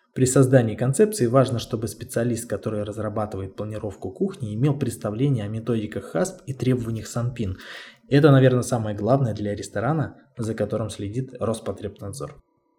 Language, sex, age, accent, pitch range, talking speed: Russian, male, 20-39, native, 105-130 Hz, 130 wpm